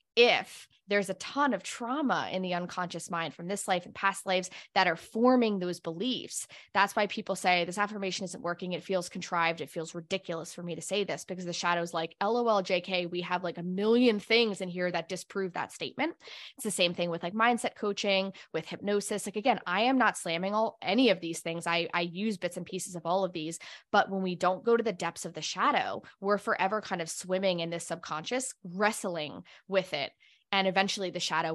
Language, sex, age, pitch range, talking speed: English, female, 20-39, 170-205 Hz, 220 wpm